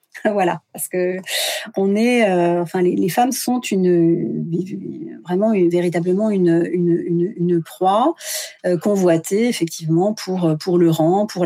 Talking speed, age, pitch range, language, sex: 145 wpm, 40-59, 170-220 Hz, French, female